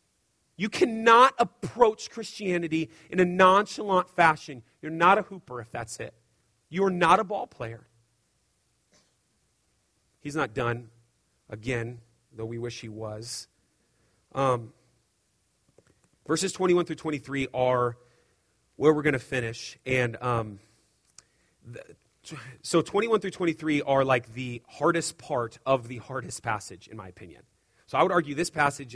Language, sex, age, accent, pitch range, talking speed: English, male, 30-49, American, 120-155 Hz, 135 wpm